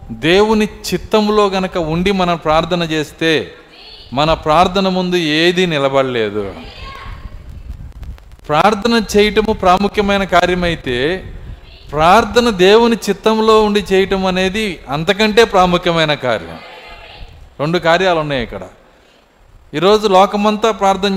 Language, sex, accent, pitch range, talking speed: Telugu, male, native, 155-215 Hz, 90 wpm